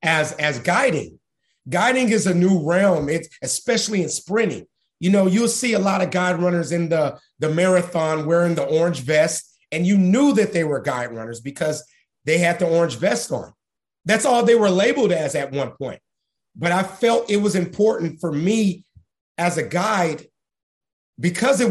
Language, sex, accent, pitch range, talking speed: English, male, American, 175-220 Hz, 180 wpm